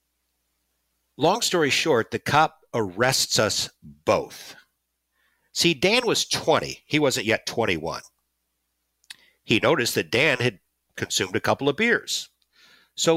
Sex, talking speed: male, 125 wpm